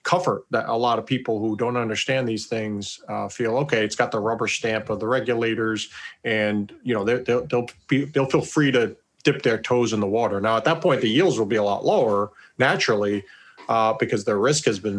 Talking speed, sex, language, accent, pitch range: 225 wpm, male, English, American, 105-130 Hz